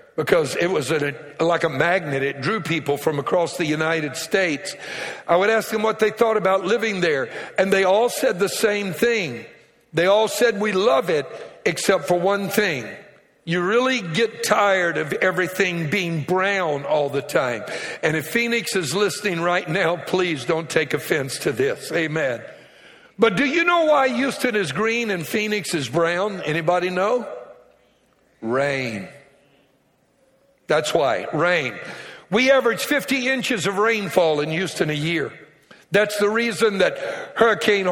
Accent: American